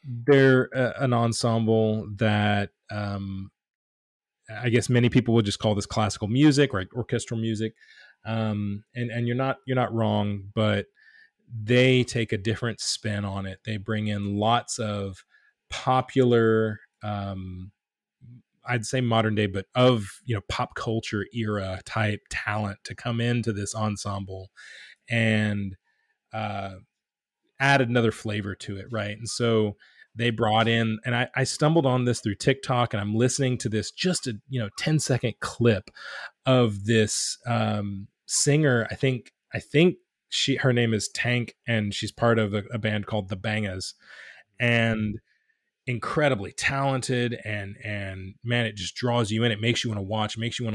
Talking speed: 160 wpm